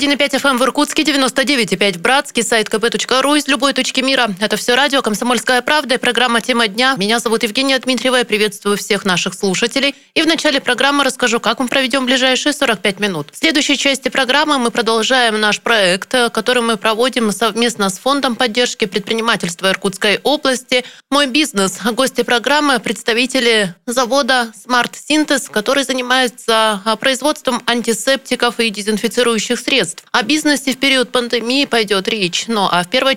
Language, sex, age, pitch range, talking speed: Russian, female, 20-39, 230-275 Hz, 155 wpm